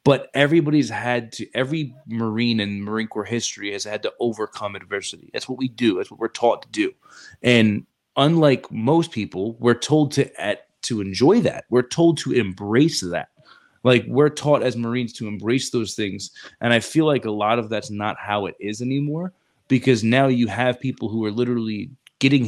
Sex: male